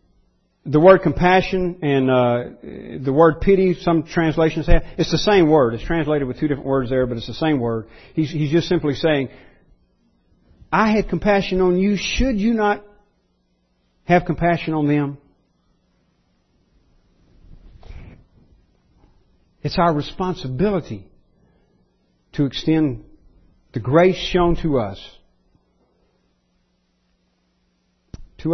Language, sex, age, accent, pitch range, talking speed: English, male, 50-69, American, 125-170 Hz, 115 wpm